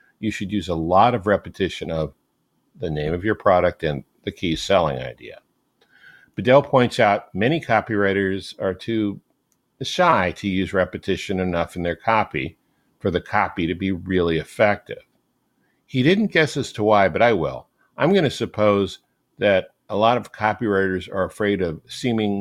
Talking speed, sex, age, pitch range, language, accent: 165 wpm, male, 50-69, 90-115 Hz, English, American